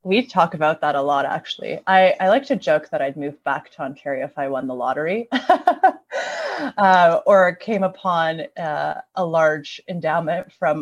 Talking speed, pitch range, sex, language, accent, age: 175 wpm, 150-200 Hz, female, English, American, 20-39